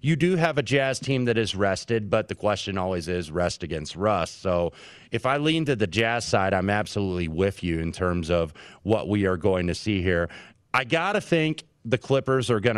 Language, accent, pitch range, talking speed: English, American, 95-120 Hz, 220 wpm